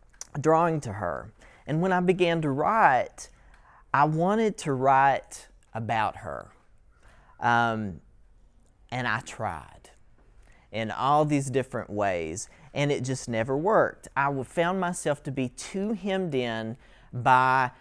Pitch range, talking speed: 115-145 Hz, 130 wpm